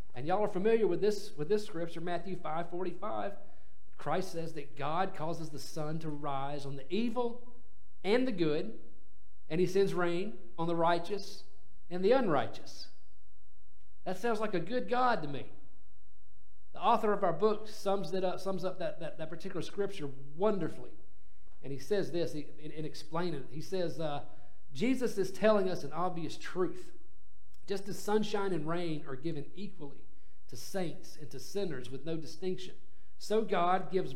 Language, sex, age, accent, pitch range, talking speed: English, male, 40-59, American, 130-190 Hz, 170 wpm